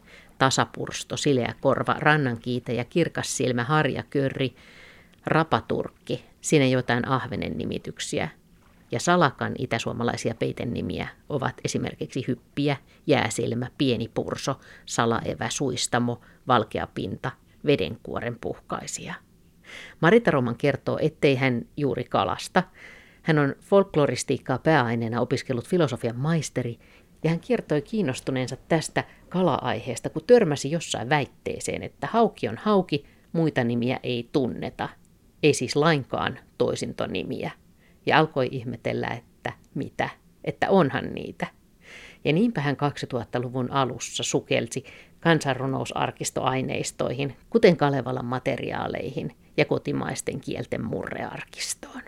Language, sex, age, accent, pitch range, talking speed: Finnish, female, 50-69, native, 120-150 Hz, 100 wpm